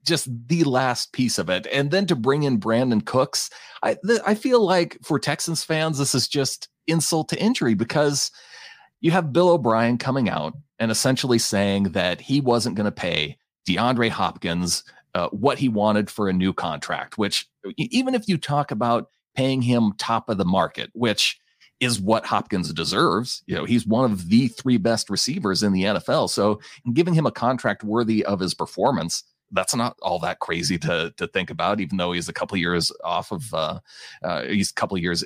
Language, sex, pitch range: English, male, 100-145 Hz